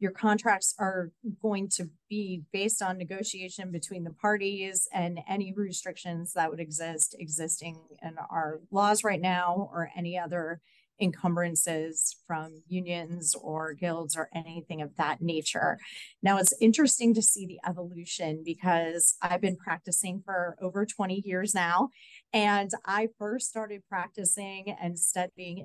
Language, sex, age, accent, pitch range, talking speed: English, female, 30-49, American, 170-200 Hz, 140 wpm